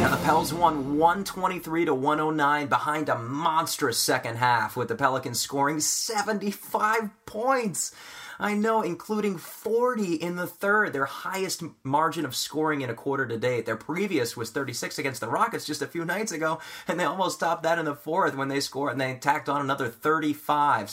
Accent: American